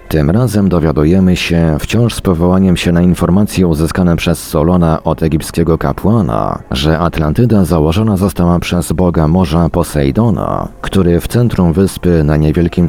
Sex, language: male, Polish